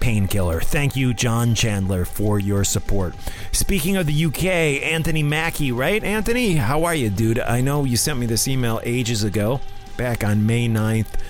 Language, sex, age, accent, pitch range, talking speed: English, male, 30-49, American, 100-135 Hz, 175 wpm